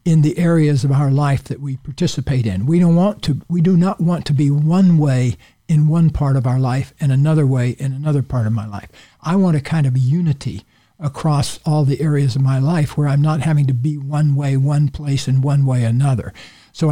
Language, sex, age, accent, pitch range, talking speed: English, male, 60-79, American, 135-165 Hz, 230 wpm